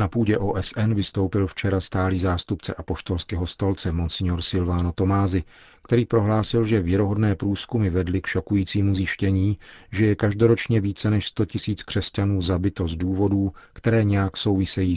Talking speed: 145 wpm